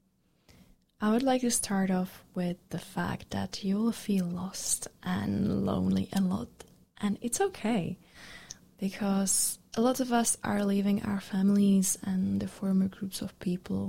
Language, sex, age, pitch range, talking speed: English, female, 20-39, 185-215 Hz, 150 wpm